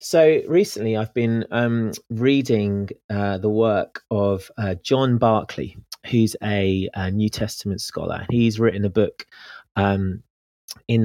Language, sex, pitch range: English, male, 100-115 Hz